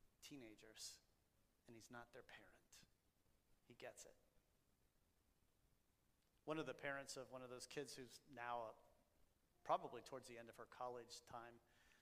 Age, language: 40-59, English